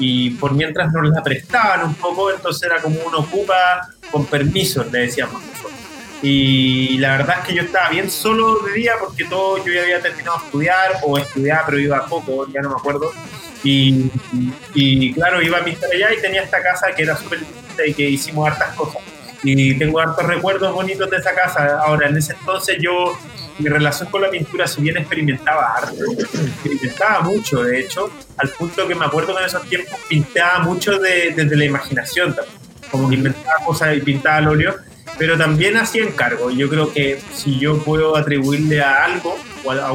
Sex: male